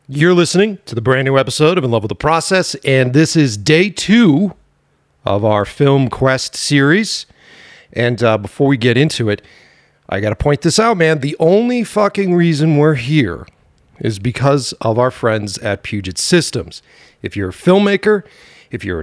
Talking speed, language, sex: 175 wpm, English, male